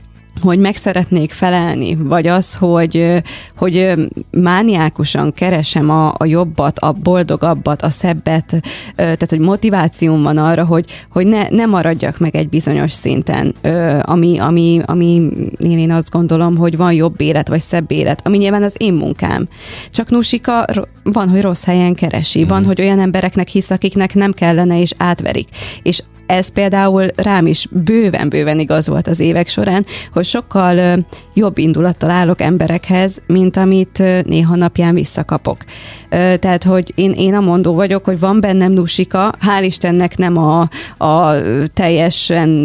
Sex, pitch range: female, 160-190 Hz